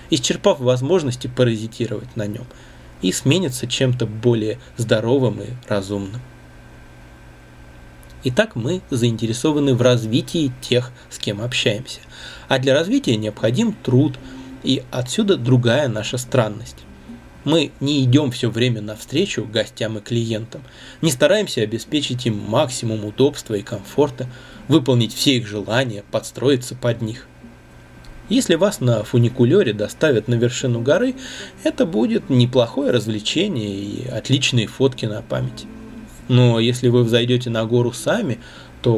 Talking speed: 125 wpm